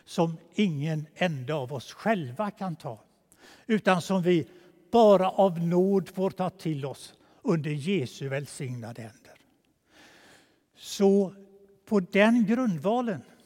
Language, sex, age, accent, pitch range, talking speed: Swedish, male, 60-79, native, 165-215 Hz, 115 wpm